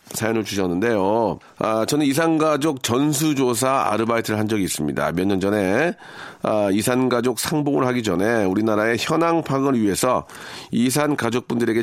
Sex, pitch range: male, 105-135 Hz